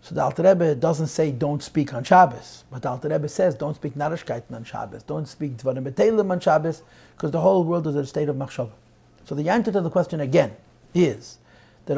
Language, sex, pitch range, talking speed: English, male, 140-175 Hz, 210 wpm